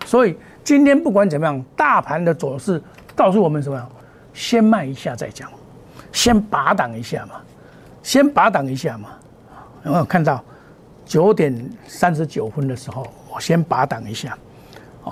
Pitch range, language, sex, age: 140-210 Hz, Chinese, male, 60-79